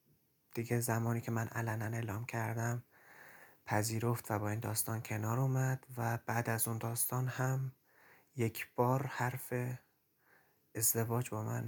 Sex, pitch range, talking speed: male, 115-125 Hz, 135 wpm